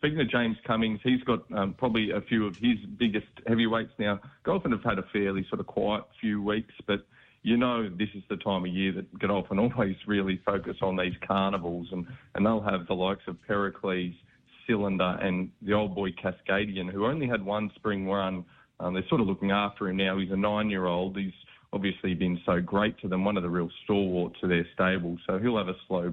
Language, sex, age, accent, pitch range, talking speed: English, male, 30-49, Australian, 95-110 Hz, 215 wpm